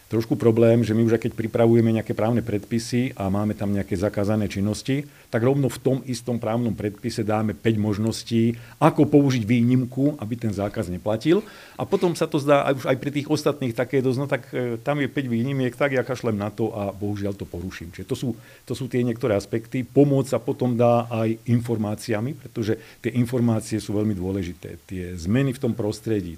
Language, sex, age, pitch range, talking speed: Slovak, male, 50-69, 105-125 Hz, 200 wpm